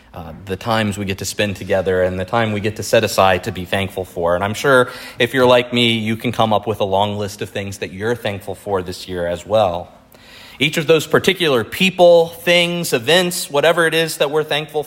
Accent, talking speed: American, 235 wpm